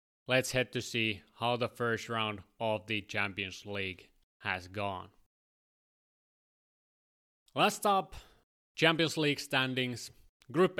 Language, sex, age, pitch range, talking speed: English, male, 30-49, 105-135 Hz, 110 wpm